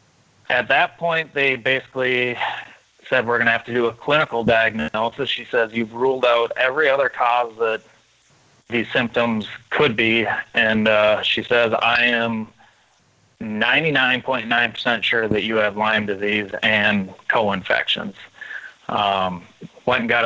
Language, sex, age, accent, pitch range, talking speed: English, male, 30-49, American, 105-120 Hz, 135 wpm